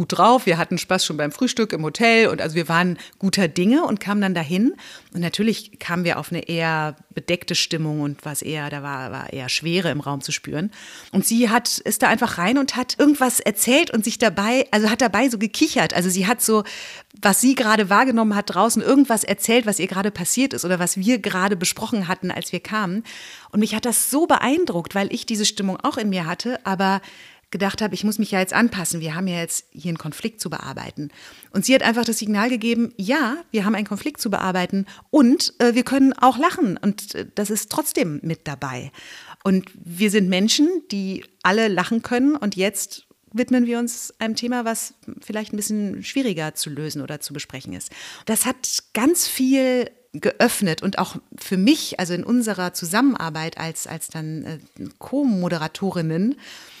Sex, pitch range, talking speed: female, 175-240 Hz, 200 wpm